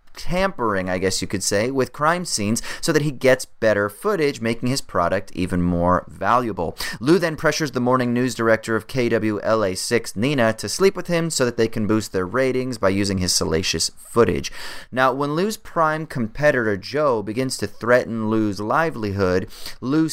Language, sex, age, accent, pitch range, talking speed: English, male, 30-49, American, 100-140 Hz, 175 wpm